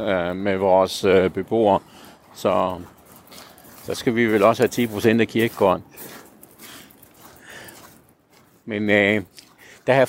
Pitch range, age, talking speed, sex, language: 95-115 Hz, 60-79, 100 wpm, male, Danish